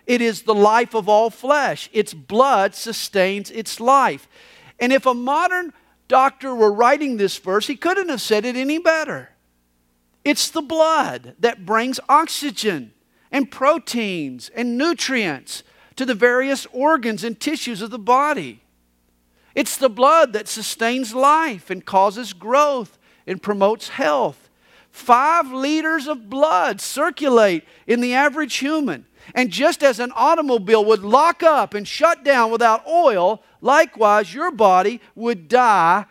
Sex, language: male, English